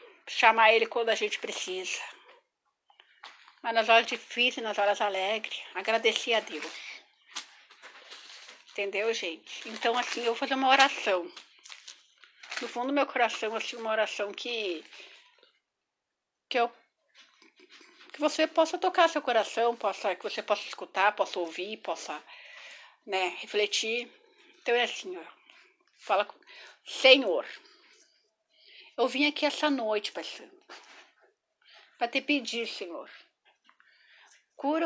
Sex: female